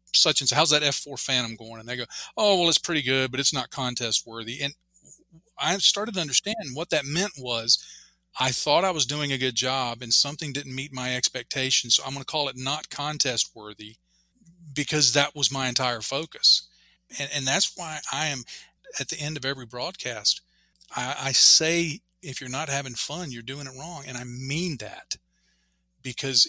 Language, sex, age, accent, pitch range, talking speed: English, male, 40-59, American, 120-150 Hz, 200 wpm